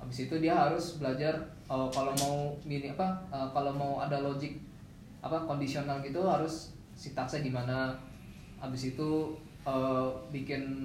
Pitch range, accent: 130-155 Hz, native